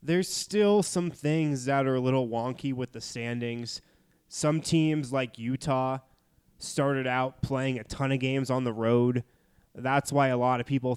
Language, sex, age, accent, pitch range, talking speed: English, male, 20-39, American, 120-145 Hz, 175 wpm